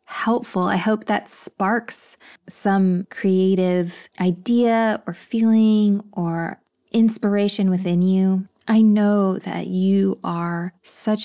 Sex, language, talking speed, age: female, English, 105 wpm, 20-39